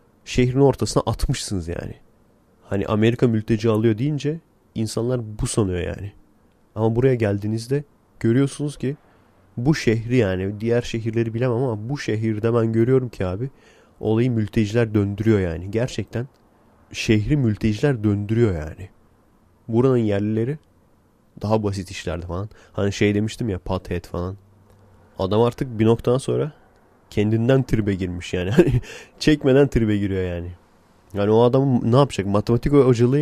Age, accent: 30-49, native